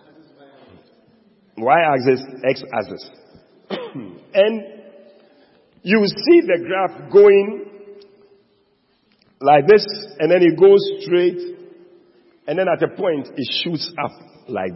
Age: 50-69